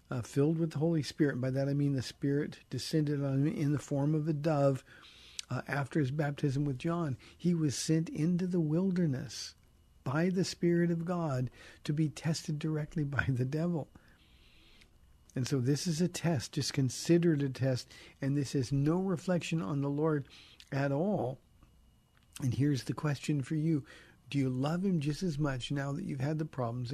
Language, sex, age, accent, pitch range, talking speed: English, male, 50-69, American, 120-155 Hz, 190 wpm